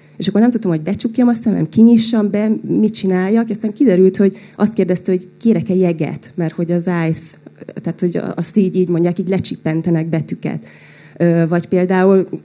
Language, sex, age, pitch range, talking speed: Hungarian, female, 30-49, 170-200 Hz, 175 wpm